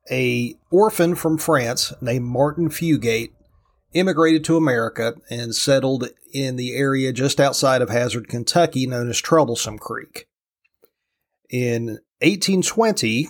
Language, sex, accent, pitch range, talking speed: English, male, American, 125-150 Hz, 115 wpm